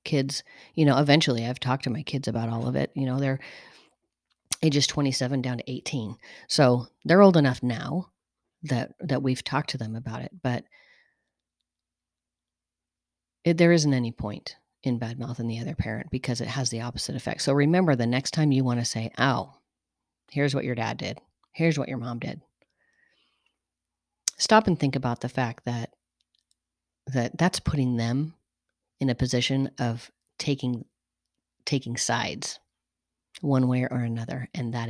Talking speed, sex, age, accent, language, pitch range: 165 wpm, female, 40-59, American, English, 115-140 Hz